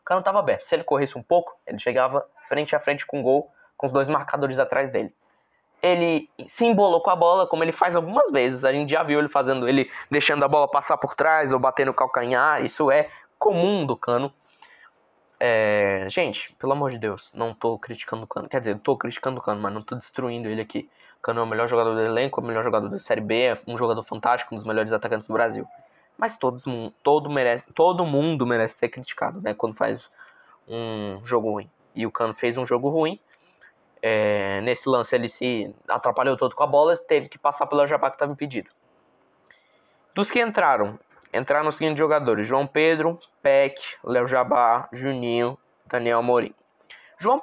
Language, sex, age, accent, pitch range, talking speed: Portuguese, male, 10-29, Brazilian, 120-160 Hz, 200 wpm